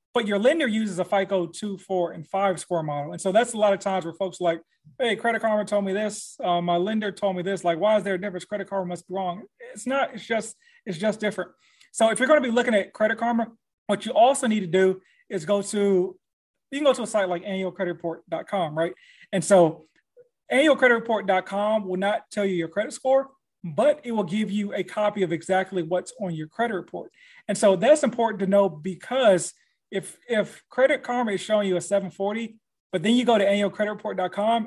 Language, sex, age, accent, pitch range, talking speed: English, male, 30-49, American, 180-220 Hz, 220 wpm